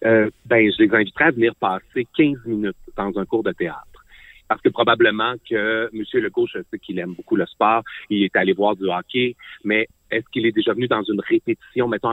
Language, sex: French, male